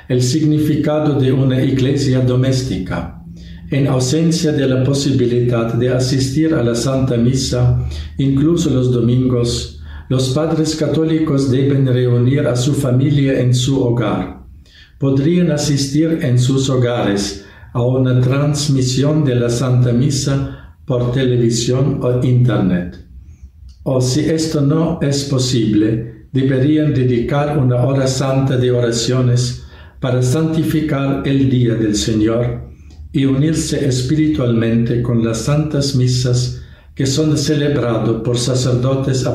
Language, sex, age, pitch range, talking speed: Spanish, male, 50-69, 115-140 Hz, 120 wpm